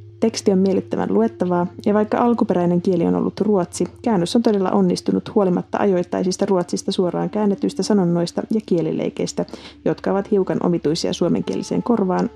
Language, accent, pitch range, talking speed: Finnish, native, 170-210 Hz, 140 wpm